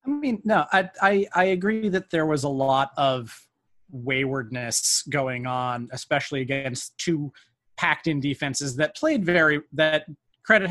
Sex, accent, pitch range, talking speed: male, American, 135-165 Hz, 150 wpm